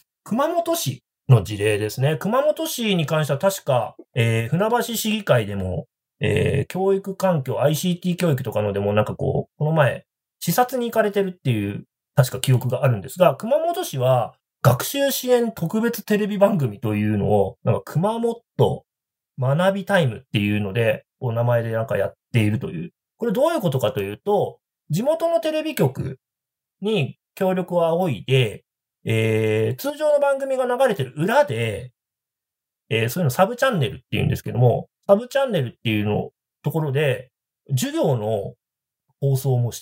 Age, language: 40-59, Japanese